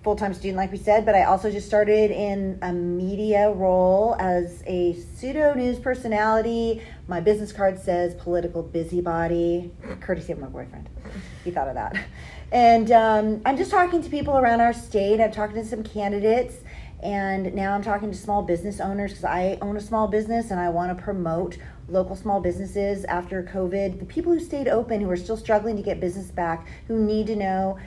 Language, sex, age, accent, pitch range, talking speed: English, female, 40-59, American, 175-220 Hz, 195 wpm